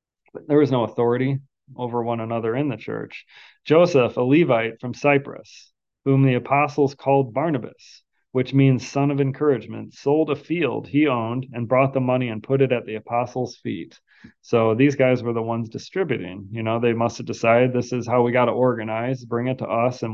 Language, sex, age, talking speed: English, male, 30-49, 195 wpm